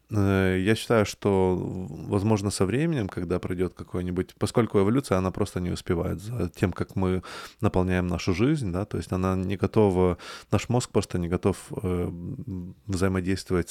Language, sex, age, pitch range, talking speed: Russian, male, 20-39, 90-100 Hz, 150 wpm